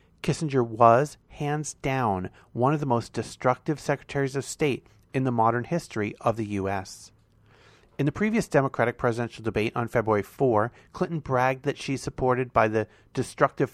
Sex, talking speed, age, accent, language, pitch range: male, 155 wpm, 40-59, American, English, 115-145 Hz